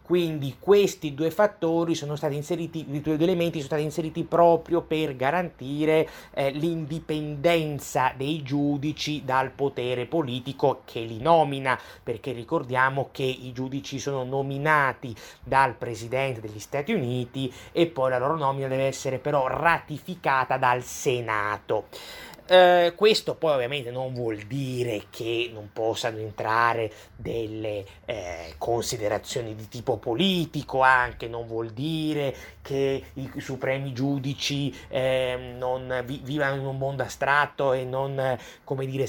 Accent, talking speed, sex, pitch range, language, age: native, 130 wpm, male, 130-165 Hz, Italian, 30-49